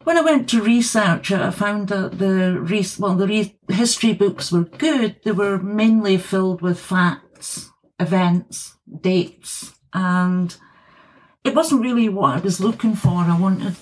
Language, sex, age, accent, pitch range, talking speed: English, female, 60-79, British, 175-200 Hz, 150 wpm